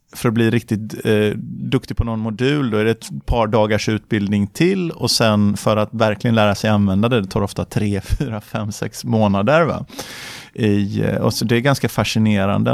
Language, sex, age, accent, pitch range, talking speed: Swedish, male, 30-49, native, 105-120 Hz, 200 wpm